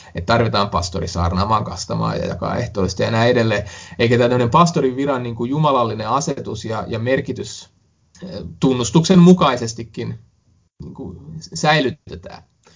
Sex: male